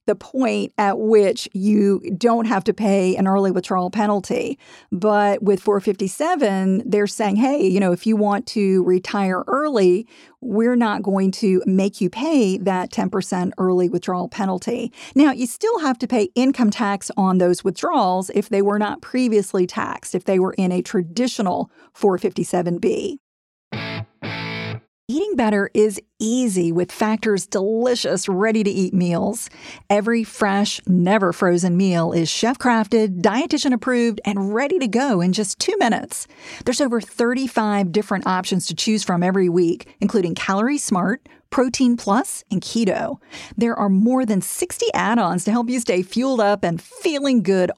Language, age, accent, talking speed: English, 50-69, American, 150 wpm